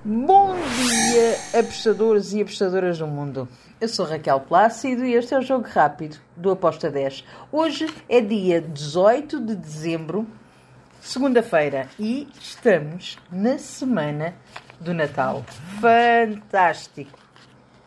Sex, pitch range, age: female, 185-255 Hz, 50-69